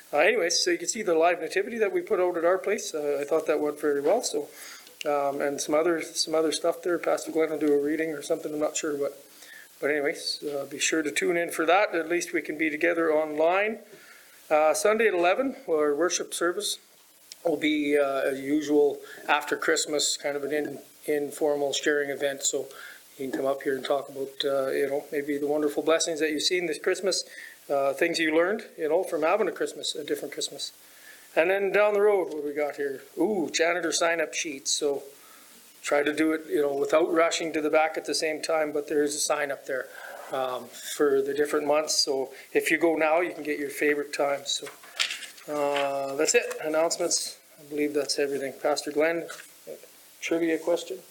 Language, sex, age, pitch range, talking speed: English, male, 40-59, 145-185 Hz, 210 wpm